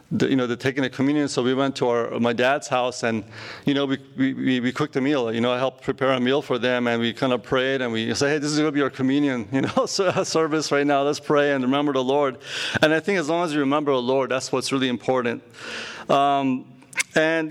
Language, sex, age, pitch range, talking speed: English, male, 40-59, 125-155 Hz, 265 wpm